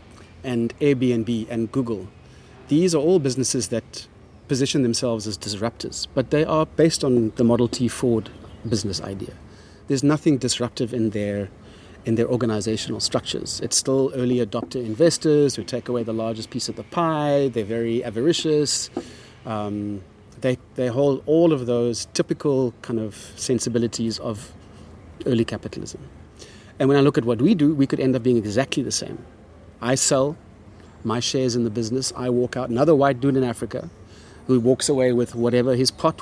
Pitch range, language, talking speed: 110-135 Hz, English, 165 wpm